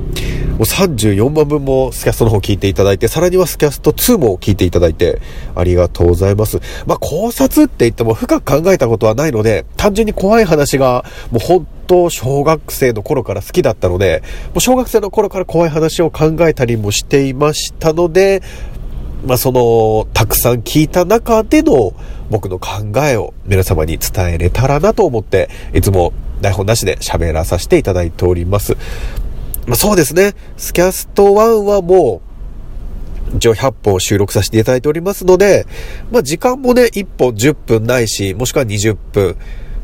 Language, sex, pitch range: Japanese, male, 105-175 Hz